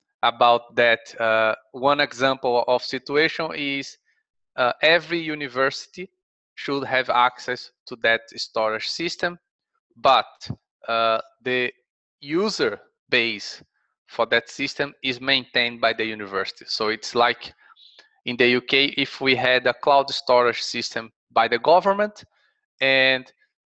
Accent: Brazilian